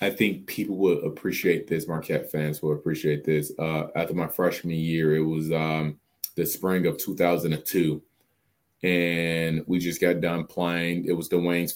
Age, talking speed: 20-39, 165 wpm